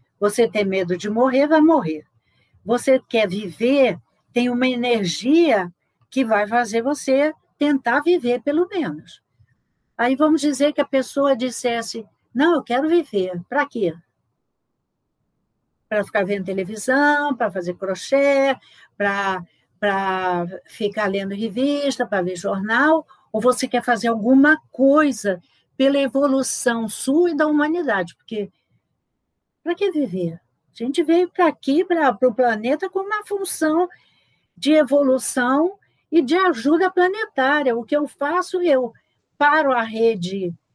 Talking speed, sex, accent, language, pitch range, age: 130 wpm, female, Brazilian, Portuguese, 215-310 Hz, 60-79